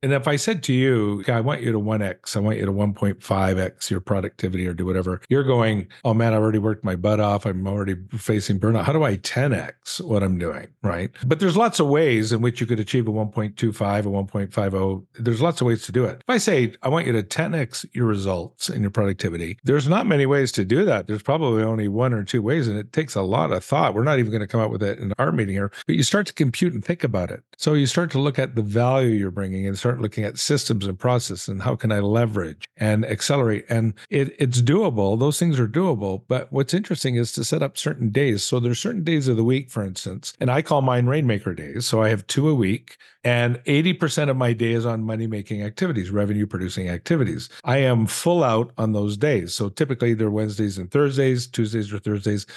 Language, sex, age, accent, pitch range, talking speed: English, male, 50-69, American, 105-135 Hz, 240 wpm